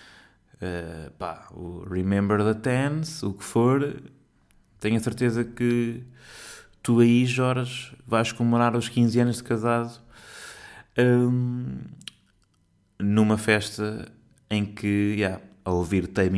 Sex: male